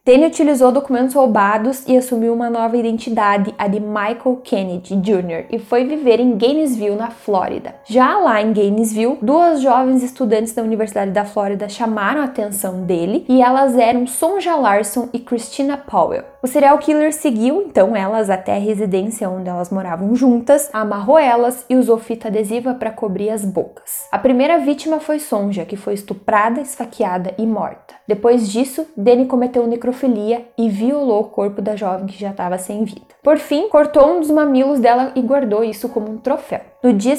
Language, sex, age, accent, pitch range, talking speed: Portuguese, female, 10-29, Brazilian, 210-260 Hz, 175 wpm